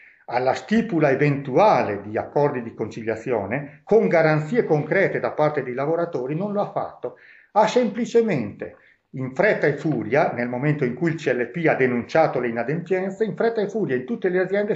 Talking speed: 170 wpm